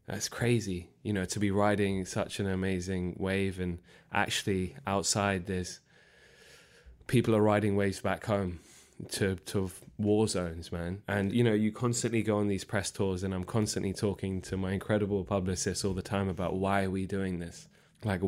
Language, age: English, 20-39